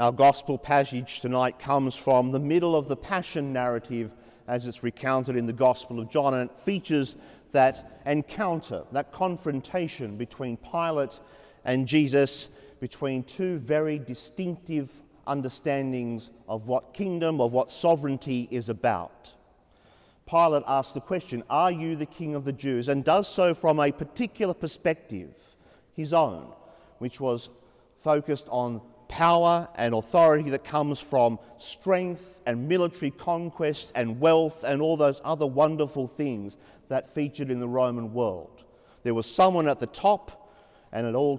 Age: 40-59